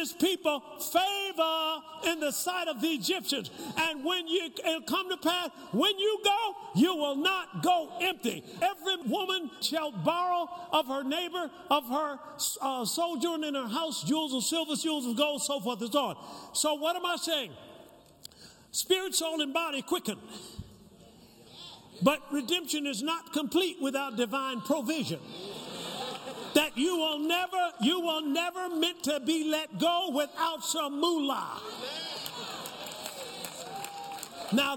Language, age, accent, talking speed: English, 50-69, American, 140 wpm